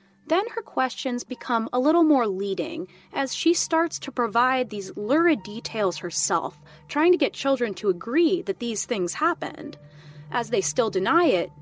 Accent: American